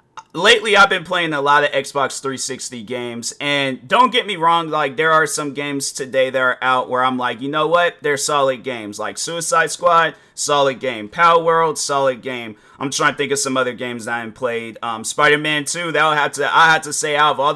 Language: English